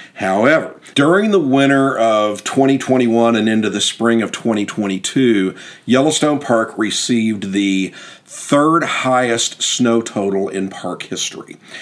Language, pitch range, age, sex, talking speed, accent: English, 95-115 Hz, 50-69, male, 115 wpm, American